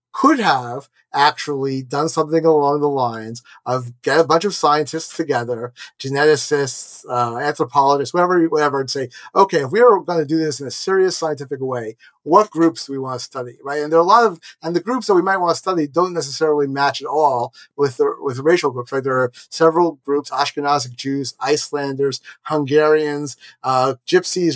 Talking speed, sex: 195 wpm, male